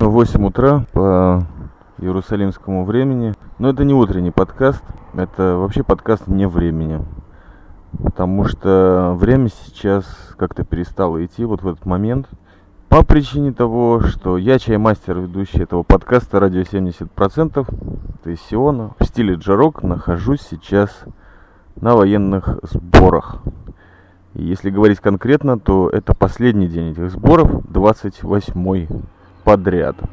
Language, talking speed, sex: Russian, 120 wpm, male